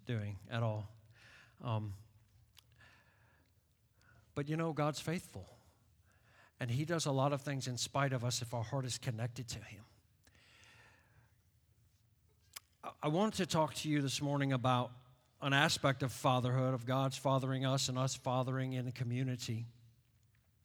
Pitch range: 115-150 Hz